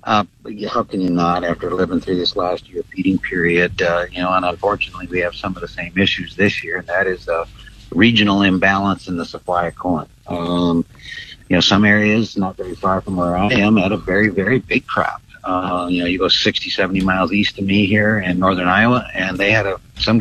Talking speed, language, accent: 220 wpm, English, American